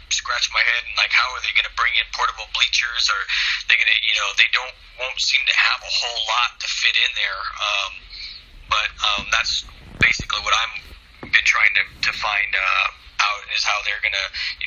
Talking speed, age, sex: 215 wpm, 30-49, male